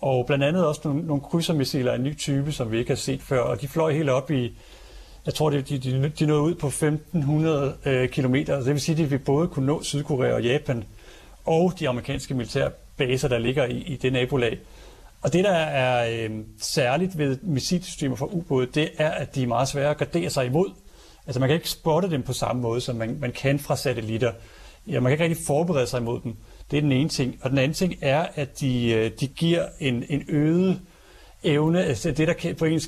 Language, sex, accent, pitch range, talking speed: Danish, male, native, 125-155 Hz, 225 wpm